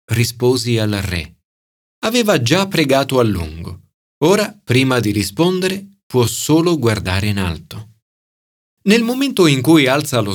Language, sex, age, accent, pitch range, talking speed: Italian, male, 40-59, native, 105-170 Hz, 135 wpm